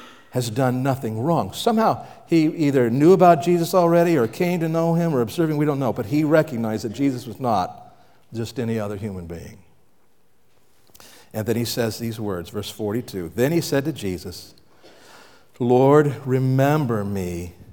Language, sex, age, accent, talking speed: English, male, 50-69, American, 165 wpm